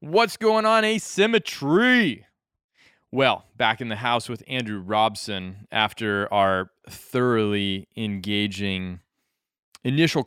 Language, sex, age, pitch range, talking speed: English, male, 20-39, 95-115 Hz, 100 wpm